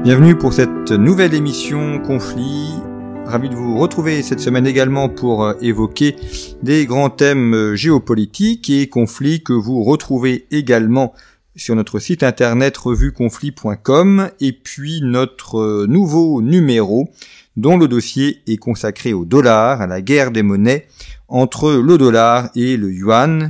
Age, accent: 40-59, French